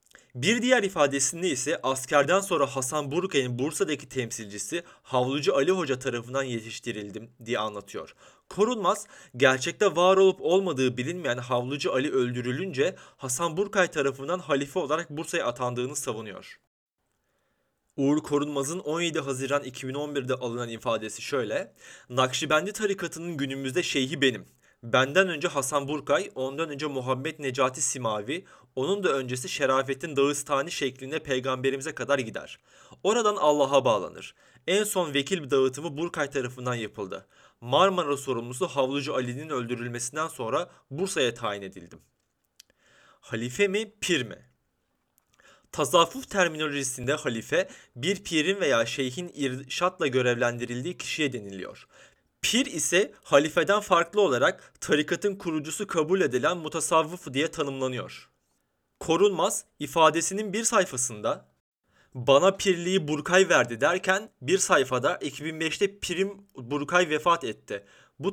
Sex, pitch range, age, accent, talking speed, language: male, 130-180 Hz, 30-49, native, 115 wpm, Turkish